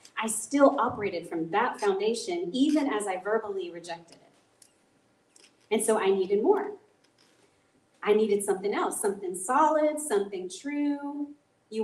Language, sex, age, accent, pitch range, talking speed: English, female, 30-49, American, 215-355 Hz, 130 wpm